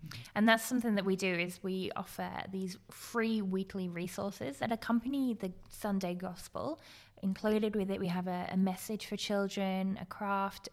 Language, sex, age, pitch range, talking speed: English, female, 20-39, 185-210 Hz, 170 wpm